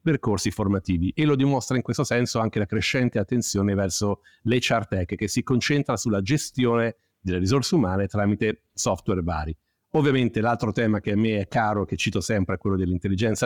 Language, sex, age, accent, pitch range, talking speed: Italian, male, 50-69, native, 100-130 Hz, 180 wpm